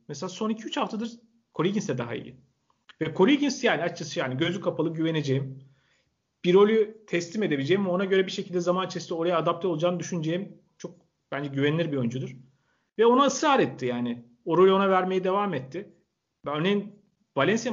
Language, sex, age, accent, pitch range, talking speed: Turkish, male, 40-59, native, 140-200 Hz, 160 wpm